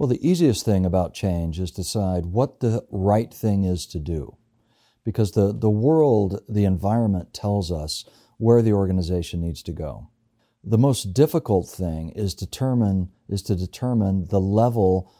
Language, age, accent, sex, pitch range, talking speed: English, 50-69, American, male, 95-115 Hz, 155 wpm